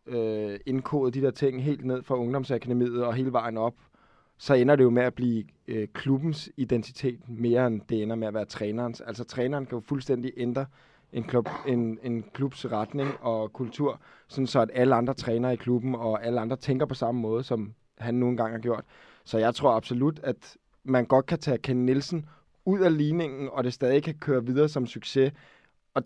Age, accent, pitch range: 20-39, native, 110-130 Hz